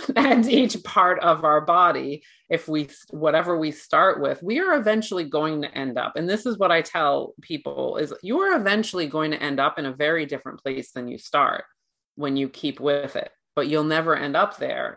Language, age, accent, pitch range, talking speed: English, 30-49, American, 135-175 Hz, 210 wpm